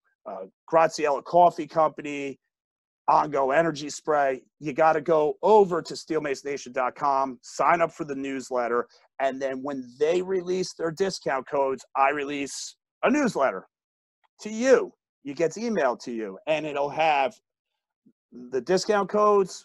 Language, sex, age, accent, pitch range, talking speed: English, male, 40-59, American, 140-180 Hz, 135 wpm